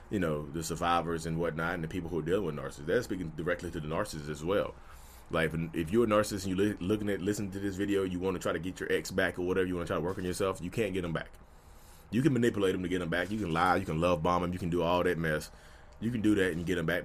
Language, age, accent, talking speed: English, 30-49, American, 315 wpm